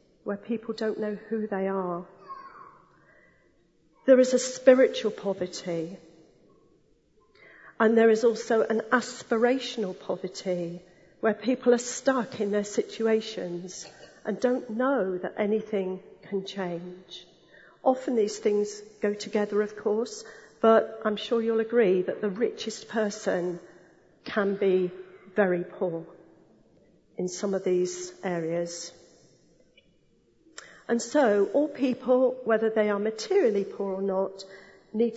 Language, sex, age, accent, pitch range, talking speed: English, female, 40-59, British, 185-230 Hz, 120 wpm